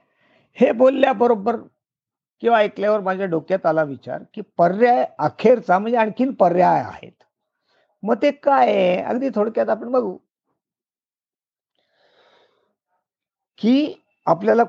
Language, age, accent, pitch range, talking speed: Marathi, 50-69, native, 150-210 Hz, 100 wpm